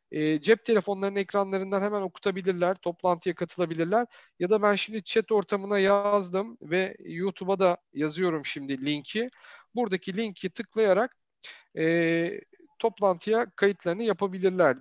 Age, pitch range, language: 40-59, 180-220 Hz, Turkish